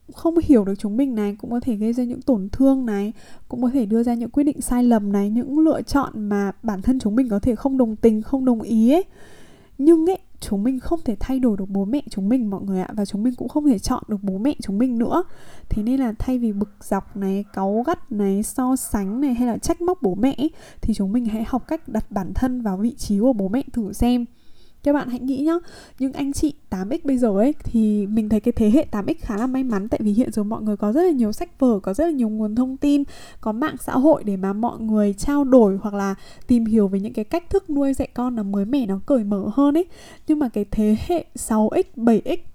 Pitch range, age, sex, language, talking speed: 210-275 Hz, 10-29, female, Vietnamese, 265 wpm